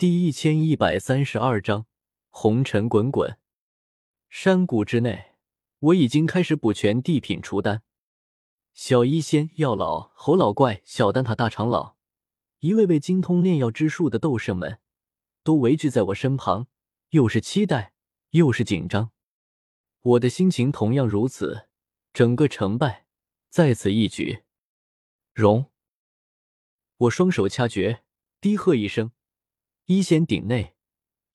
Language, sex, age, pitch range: Chinese, male, 20-39, 105-160 Hz